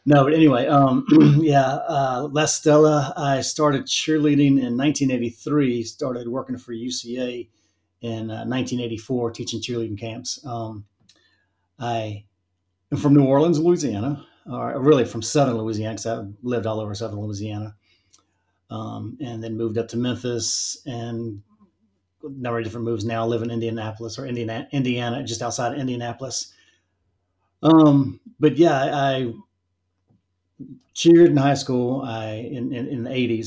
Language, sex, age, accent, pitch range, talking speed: English, male, 30-49, American, 110-135 Hz, 140 wpm